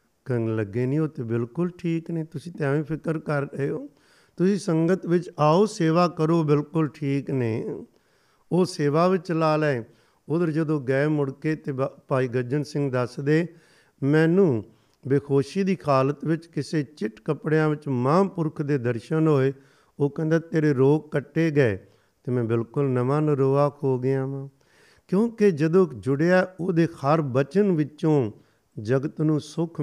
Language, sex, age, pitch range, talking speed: Punjabi, male, 50-69, 135-160 Hz, 155 wpm